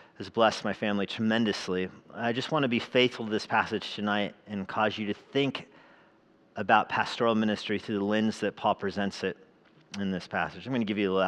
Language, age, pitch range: English, 40-59, 115-160 Hz